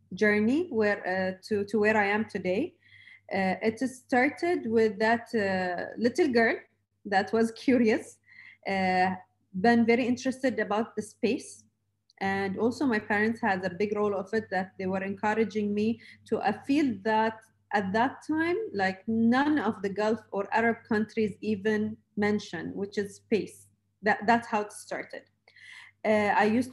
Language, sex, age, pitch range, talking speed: English, female, 30-49, 190-225 Hz, 155 wpm